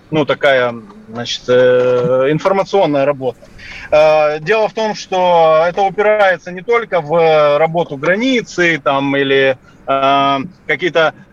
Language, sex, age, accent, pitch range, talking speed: Russian, male, 30-49, native, 155-195 Hz, 100 wpm